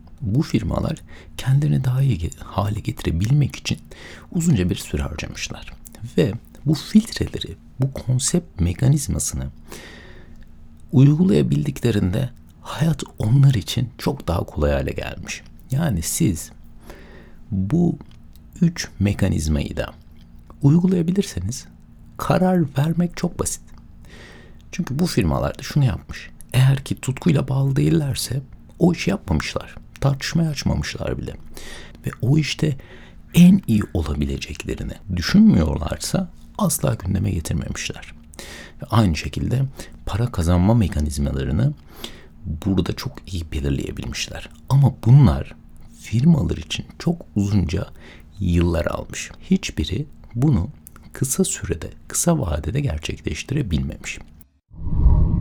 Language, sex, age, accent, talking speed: Turkish, male, 60-79, native, 95 wpm